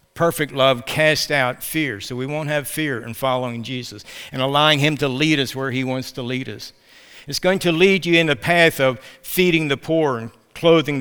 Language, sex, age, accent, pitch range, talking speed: English, male, 60-79, American, 140-170 Hz, 215 wpm